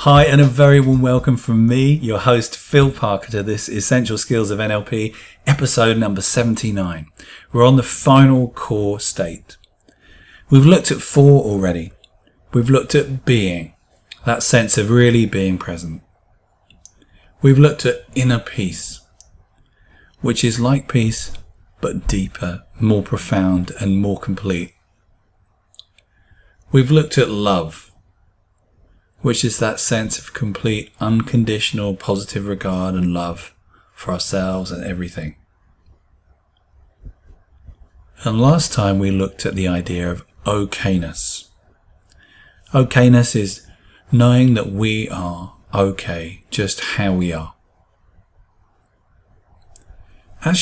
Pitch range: 95-120 Hz